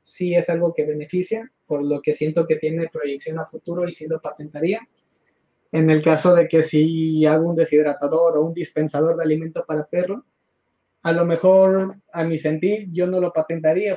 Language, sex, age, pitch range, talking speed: Spanish, male, 30-49, 155-185 Hz, 195 wpm